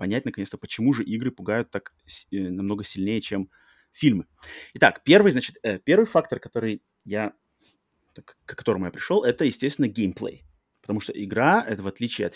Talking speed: 165 wpm